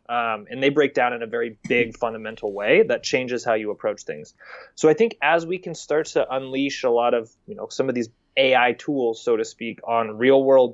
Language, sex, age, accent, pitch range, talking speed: English, male, 20-39, American, 115-170 Hz, 235 wpm